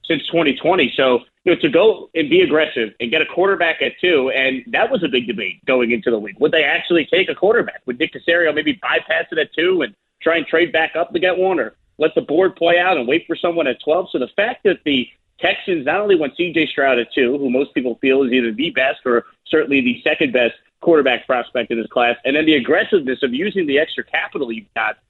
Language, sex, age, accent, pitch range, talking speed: English, male, 30-49, American, 130-185 Hz, 245 wpm